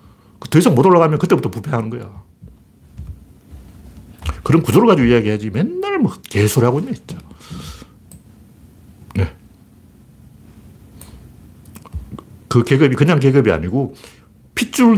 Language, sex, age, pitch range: Korean, male, 60-79, 100-140 Hz